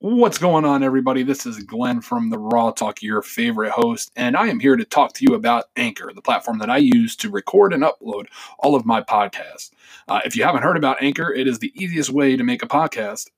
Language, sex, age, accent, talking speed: English, male, 20-39, American, 240 wpm